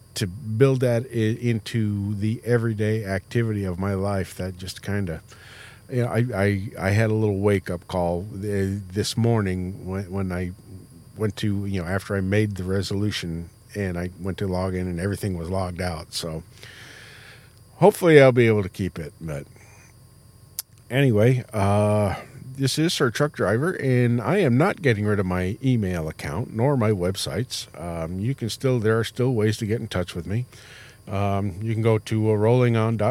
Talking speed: 180 wpm